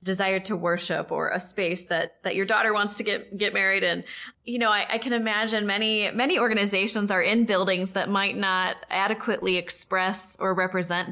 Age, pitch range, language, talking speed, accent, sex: 10-29, 185-235 Hz, English, 190 wpm, American, female